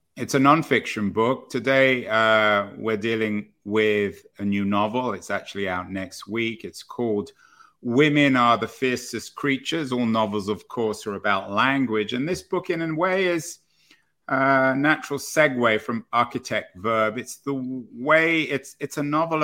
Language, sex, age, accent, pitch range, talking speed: English, male, 50-69, British, 105-140 Hz, 150 wpm